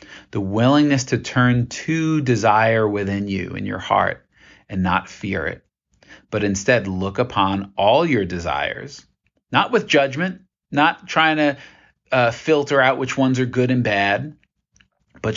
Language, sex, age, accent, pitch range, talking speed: English, male, 40-59, American, 100-130 Hz, 150 wpm